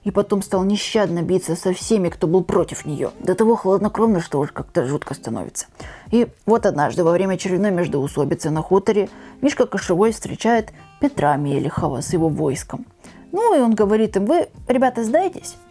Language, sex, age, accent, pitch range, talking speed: Russian, female, 20-39, native, 175-255 Hz, 170 wpm